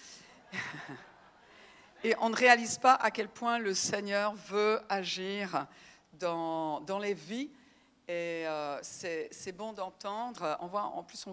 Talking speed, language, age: 145 wpm, French, 50-69